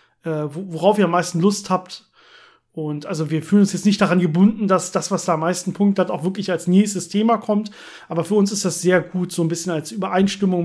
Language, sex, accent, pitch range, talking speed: German, male, German, 165-200 Hz, 230 wpm